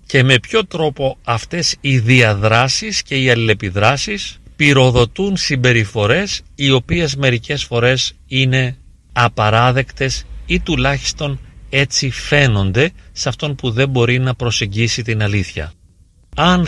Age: 40-59